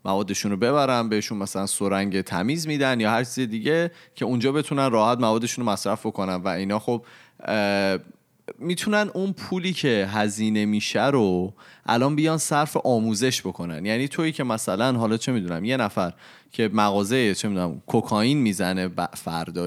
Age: 30-49